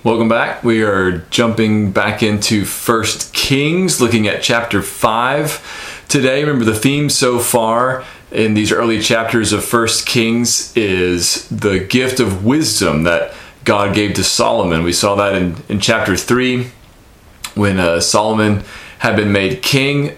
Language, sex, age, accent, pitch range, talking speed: English, male, 30-49, American, 100-115 Hz, 150 wpm